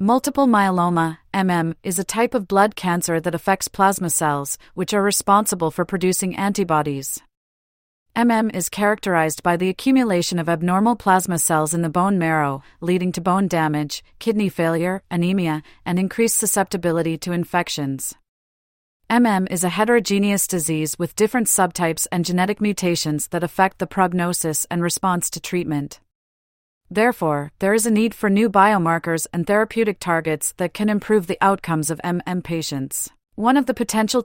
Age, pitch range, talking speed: 40-59, 165-200 Hz, 150 wpm